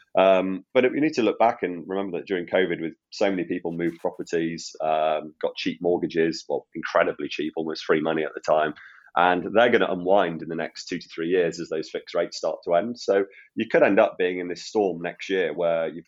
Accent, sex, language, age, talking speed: British, male, English, 30-49, 235 wpm